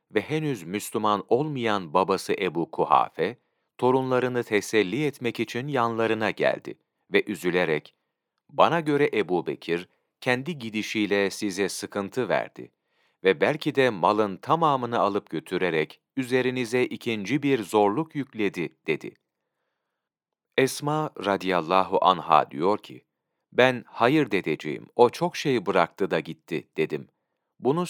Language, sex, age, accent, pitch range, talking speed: Turkish, male, 40-59, native, 100-135 Hz, 115 wpm